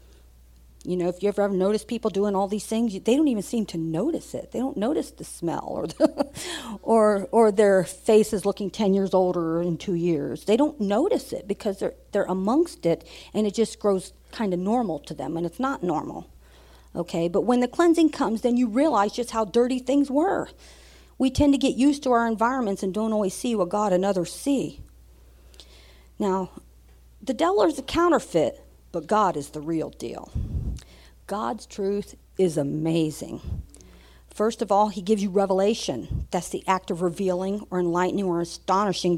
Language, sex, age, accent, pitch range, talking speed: English, female, 50-69, American, 165-230 Hz, 185 wpm